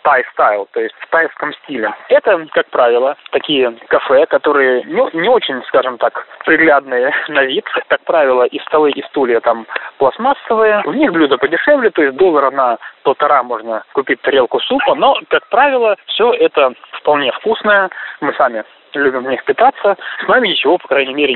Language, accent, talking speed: Russian, native, 170 wpm